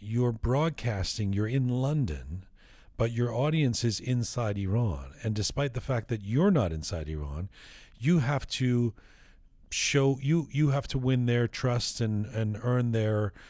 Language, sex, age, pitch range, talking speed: English, male, 40-59, 100-135 Hz, 155 wpm